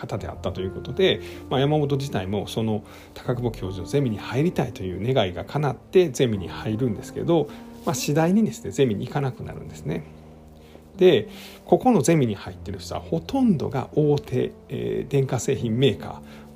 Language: Japanese